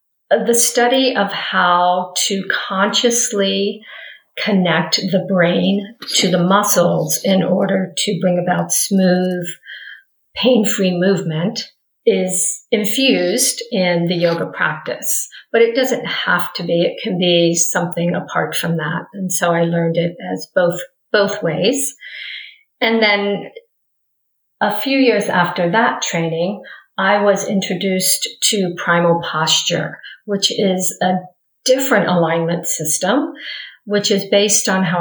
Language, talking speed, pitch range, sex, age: English, 125 wpm, 175-225 Hz, female, 50-69